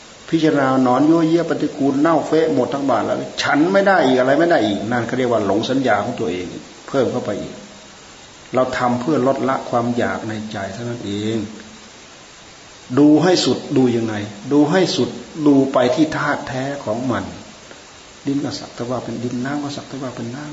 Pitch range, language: 115-145 Hz, Thai